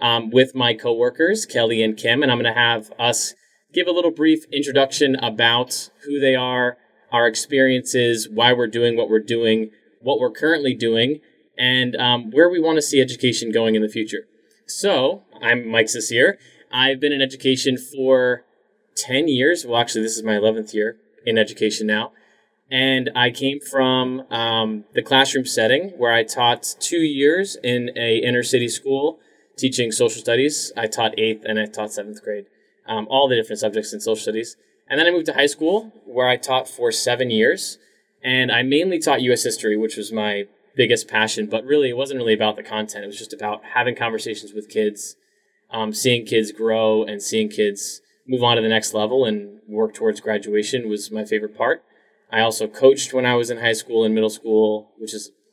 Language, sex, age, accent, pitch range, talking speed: English, male, 20-39, American, 110-135 Hz, 195 wpm